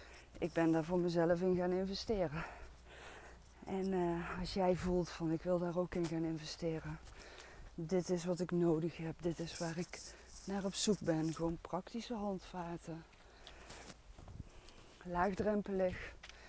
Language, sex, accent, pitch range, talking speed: Dutch, female, Dutch, 160-185 Hz, 140 wpm